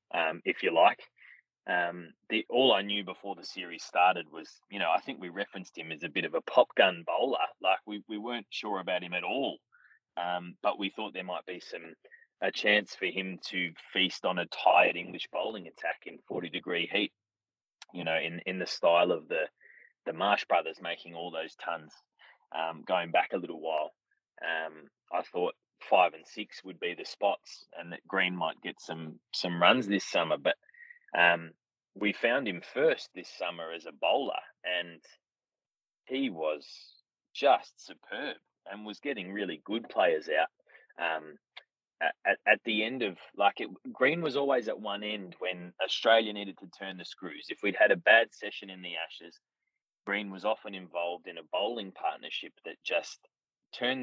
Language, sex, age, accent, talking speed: English, male, 20-39, Australian, 185 wpm